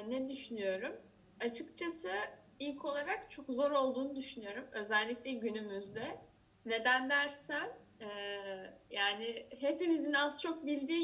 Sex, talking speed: female, 105 wpm